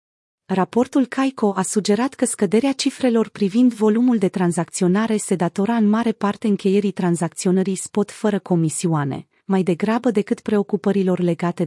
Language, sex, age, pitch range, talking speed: Romanian, female, 30-49, 175-225 Hz, 135 wpm